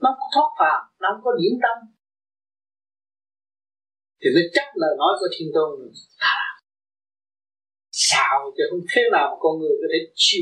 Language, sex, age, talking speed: Vietnamese, male, 30-49, 180 wpm